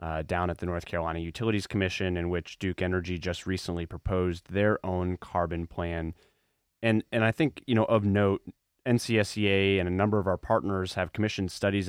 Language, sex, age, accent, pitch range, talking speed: English, male, 30-49, American, 90-105 Hz, 185 wpm